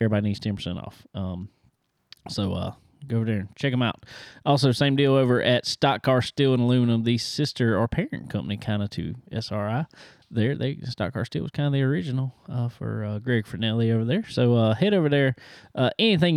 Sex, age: male, 20-39